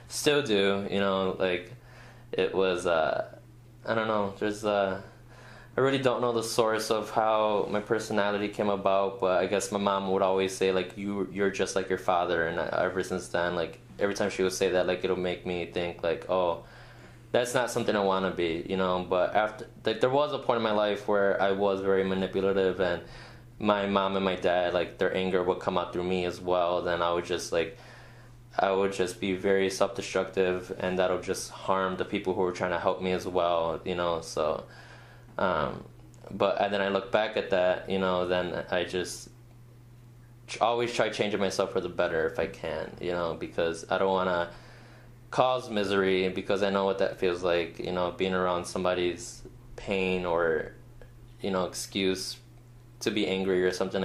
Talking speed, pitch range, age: 200 wpm, 95-115 Hz, 20-39